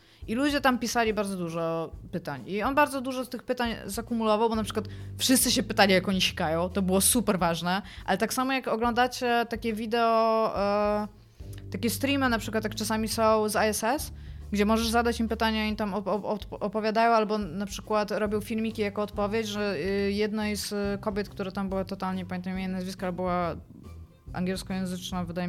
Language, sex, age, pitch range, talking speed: Polish, female, 20-39, 190-230 Hz, 180 wpm